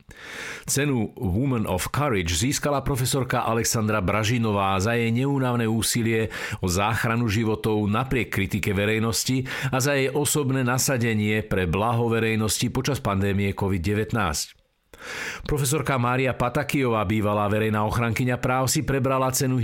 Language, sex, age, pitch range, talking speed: Slovak, male, 50-69, 105-125 Hz, 120 wpm